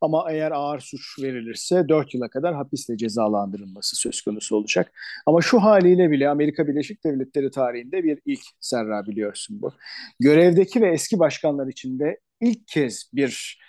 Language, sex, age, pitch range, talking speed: Turkish, male, 50-69, 135-175 Hz, 150 wpm